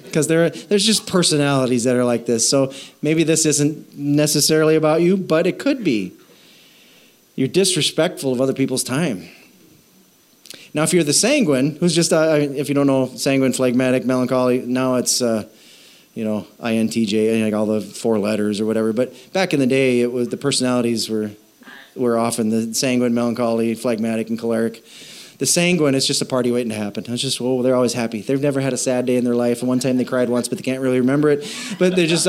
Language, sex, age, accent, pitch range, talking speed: English, male, 30-49, American, 120-175 Hz, 210 wpm